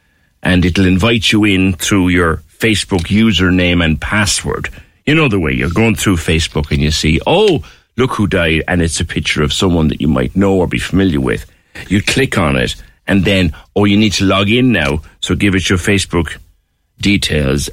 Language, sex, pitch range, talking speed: English, male, 80-100 Hz, 200 wpm